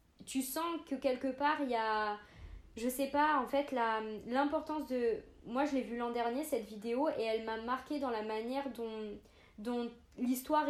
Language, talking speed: French, 190 wpm